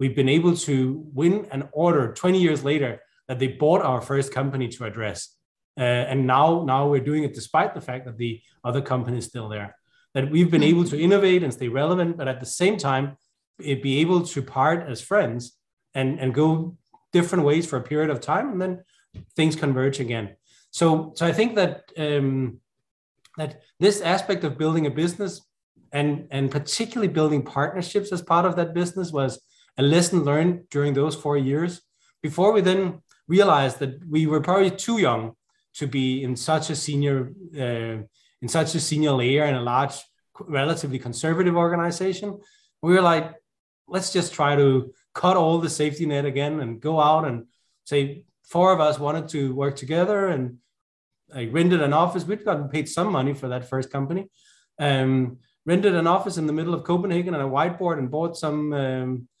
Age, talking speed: 20-39, 185 wpm